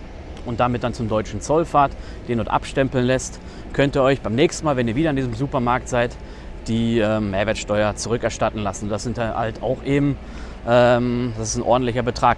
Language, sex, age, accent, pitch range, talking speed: German, male, 30-49, German, 110-145 Hz, 190 wpm